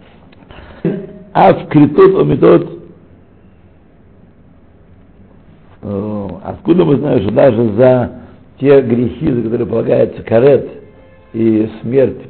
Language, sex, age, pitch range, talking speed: Russian, male, 60-79, 90-120 Hz, 85 wpm